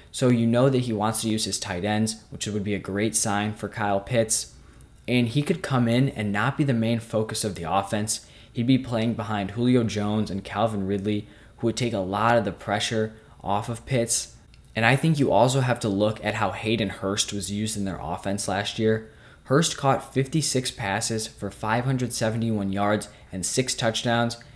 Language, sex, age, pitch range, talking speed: English, male, 10-29, 100-120 Hz, 205 wpm